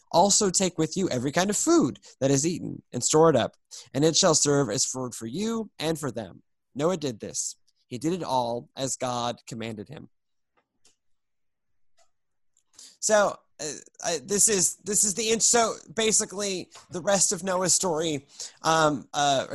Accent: American